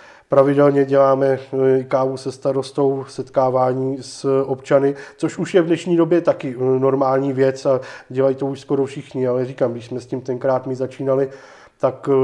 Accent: native